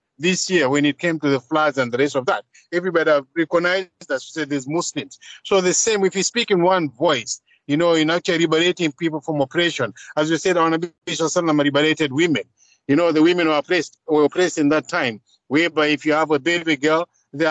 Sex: male